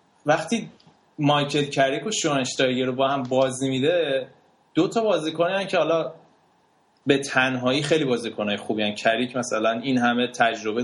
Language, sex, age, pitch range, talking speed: Persian, male, 20-39, 120-150 Hz, 150 wpm